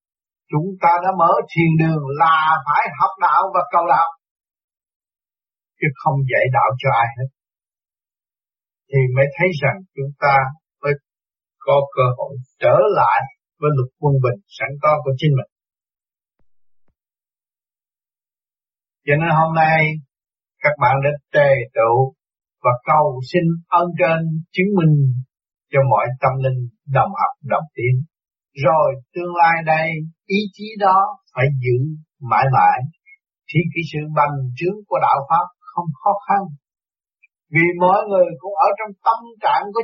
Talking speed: 145 wpm